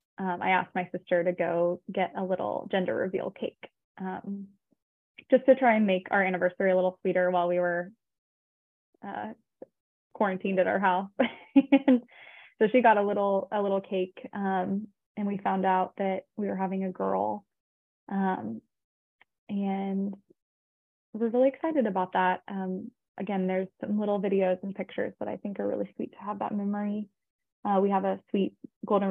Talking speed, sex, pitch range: 170 wpm, female, 185-205 Hz